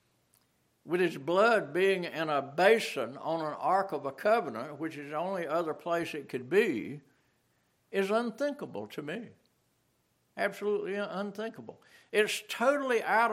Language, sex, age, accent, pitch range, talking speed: English, male, 60-79, American, 145-235 Hz, 140 wpm